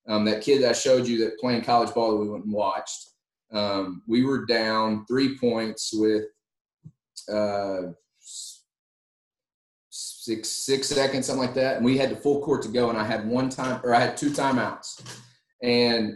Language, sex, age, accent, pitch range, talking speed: English, male, 30-49, American, 110-130 Hz, 185 wpm